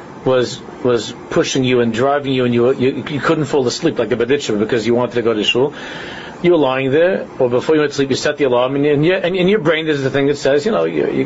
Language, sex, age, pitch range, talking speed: English, male, 50-69, 125-170 Hz, 290 wpm